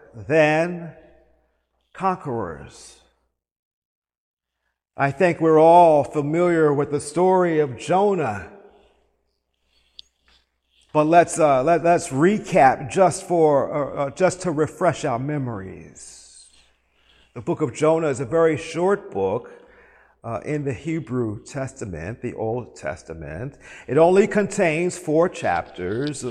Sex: male